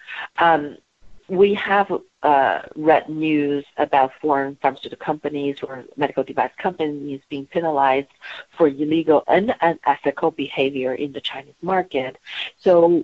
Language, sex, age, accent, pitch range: Chinese, female, 50-69, American, 145-180 Hz